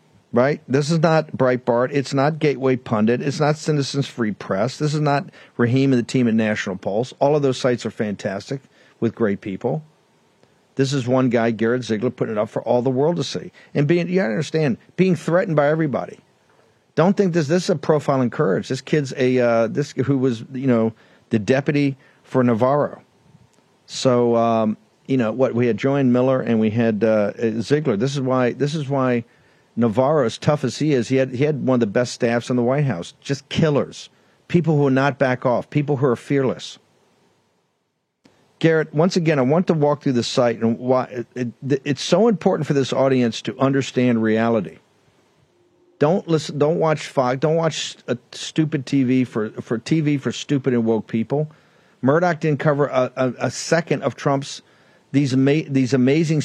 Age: 50-69